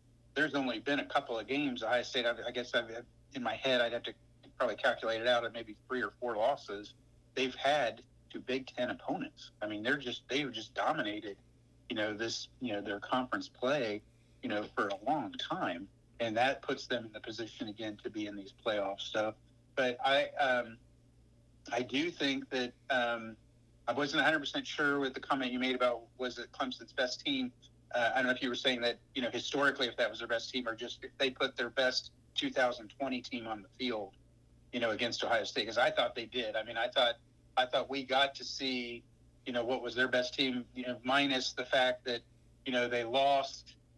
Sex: male